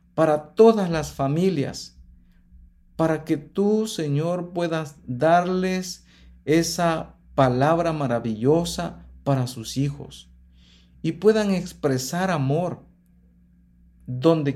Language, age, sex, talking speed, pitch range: Spanish, 50-69, male, 85 wpm, 115-170 Hz